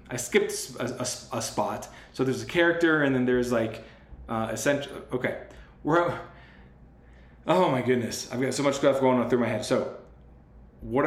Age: 20-39